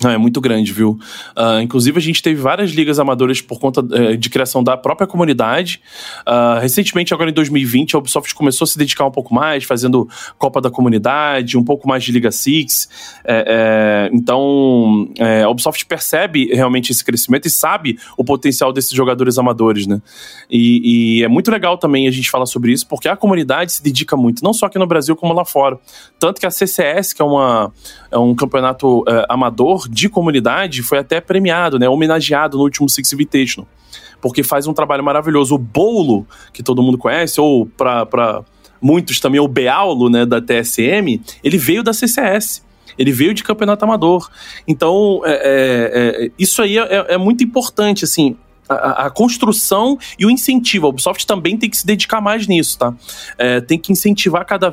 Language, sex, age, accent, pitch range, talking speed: Portuguese, male, 20-39, Brazilian, 125-185 Hz, 185 wpm